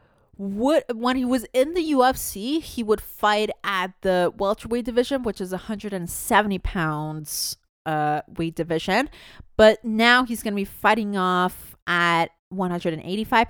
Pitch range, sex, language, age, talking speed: 195-260 Hz, female, English, 20-39, 135 wpm